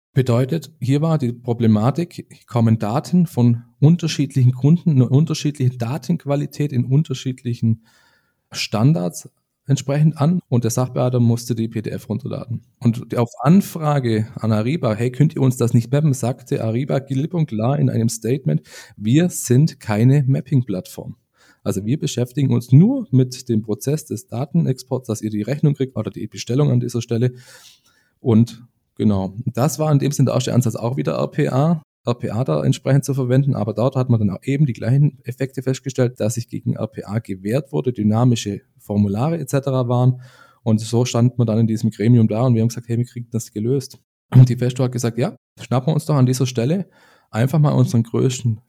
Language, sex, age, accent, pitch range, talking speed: German, male, 40-59, German, 115-140 Hz, 175 wpm